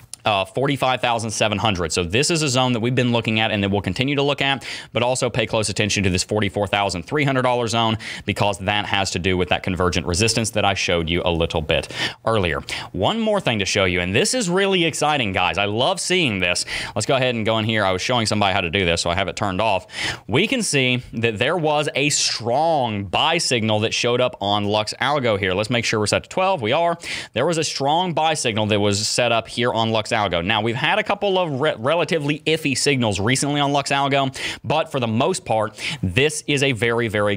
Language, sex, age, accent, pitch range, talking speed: English, male, 30-49, American, 105-145 Hz, 235 wpm